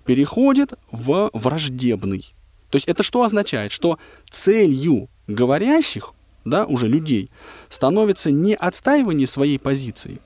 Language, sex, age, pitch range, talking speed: Russian, male, 20-39, 115-190 Hz, 110 wpm